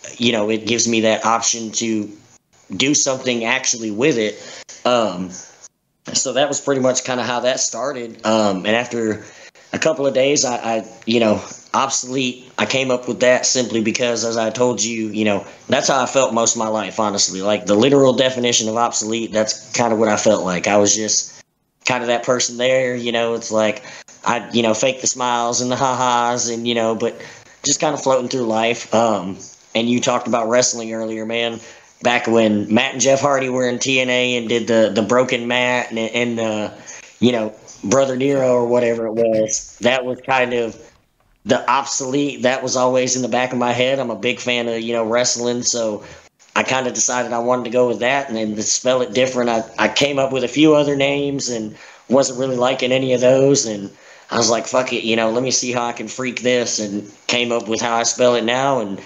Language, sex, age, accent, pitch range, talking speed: English, male, 30-49, American, 110-125 Hz, 225 wpm